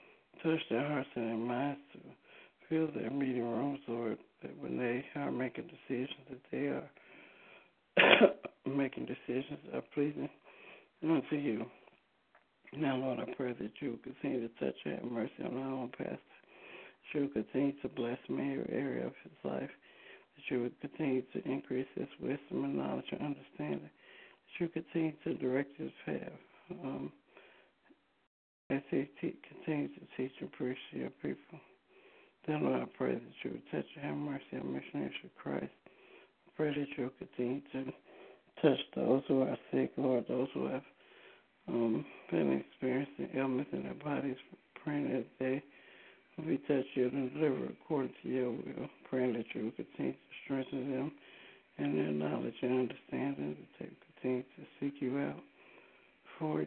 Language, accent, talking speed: English, American, 165 wpm